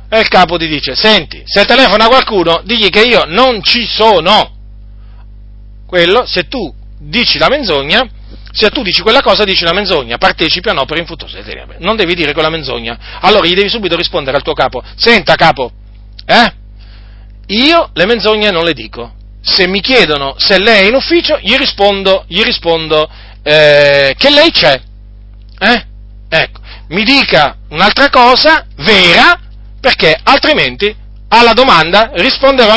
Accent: native